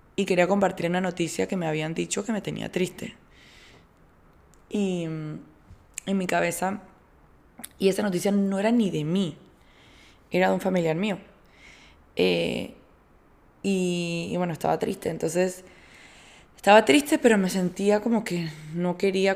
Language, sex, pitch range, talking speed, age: Spanish, female, 165-195 Hz, 145 wpm, 20-39